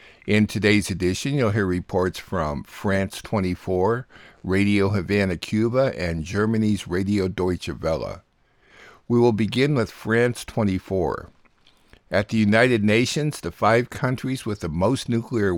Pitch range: 95-115 Hz